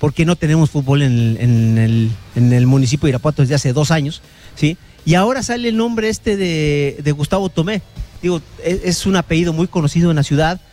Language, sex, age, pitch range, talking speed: English, male, 40-59, 130-165 Hz, 215 wpm